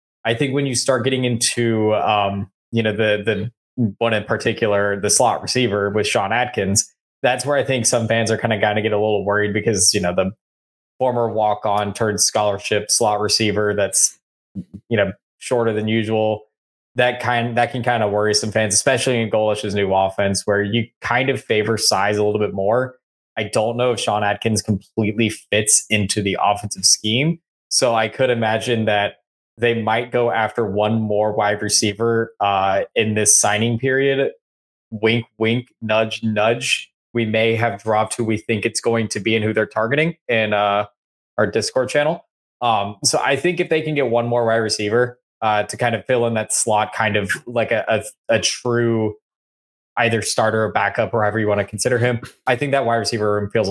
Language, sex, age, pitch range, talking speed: English, male, 20-39, 105-120 Hz, 195 wpm